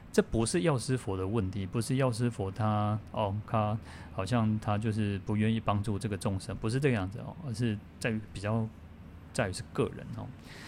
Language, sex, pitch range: Chinese, male, 100-125 Hz